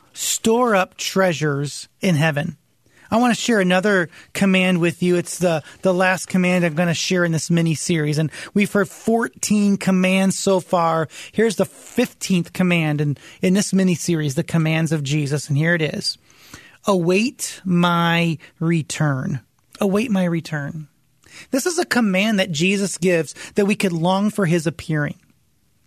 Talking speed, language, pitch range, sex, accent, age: 160 wpm, English, 165-205 Hz, male, American, 30-49